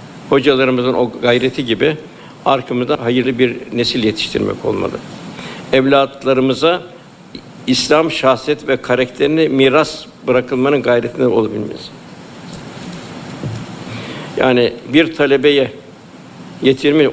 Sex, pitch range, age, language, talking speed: male, 125-150 Hz, 60-79, Turkish, 80 wpm